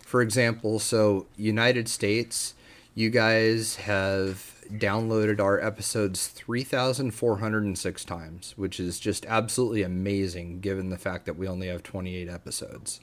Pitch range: 100-115 Hz